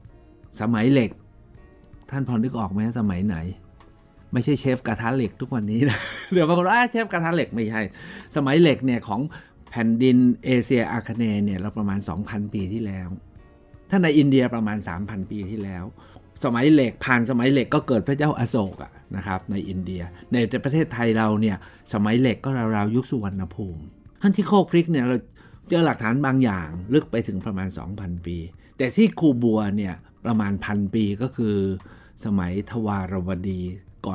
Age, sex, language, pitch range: 60-79, male, Thai, 95-130 Hz